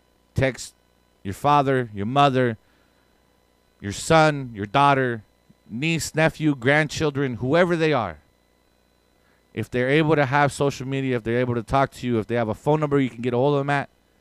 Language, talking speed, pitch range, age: English, 175 wpm, 120-170 Hz, 30-49